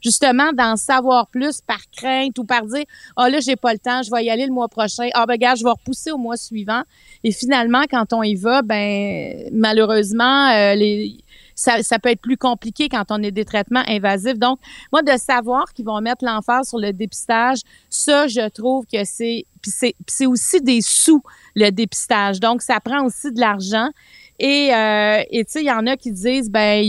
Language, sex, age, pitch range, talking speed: French, female, 40-59, 210-255 Hz, 220 wpm